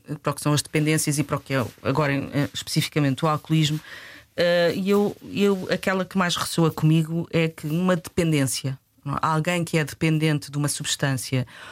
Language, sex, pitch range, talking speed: Portuguese, female, 145-190 Hz, 170 wpm